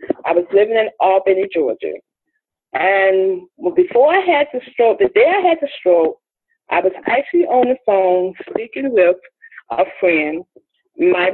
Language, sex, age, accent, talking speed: English, female, 40-59, American, 155 wpm